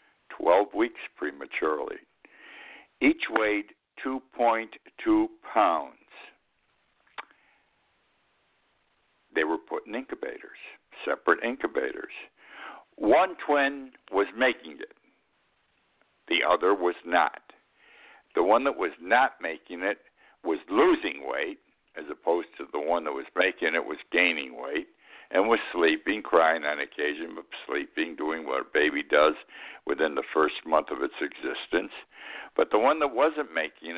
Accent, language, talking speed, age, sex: American, English, 125 wpm, 60-79, male